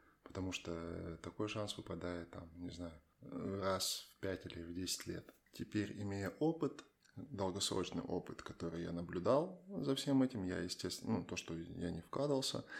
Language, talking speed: Russian, 160 wpm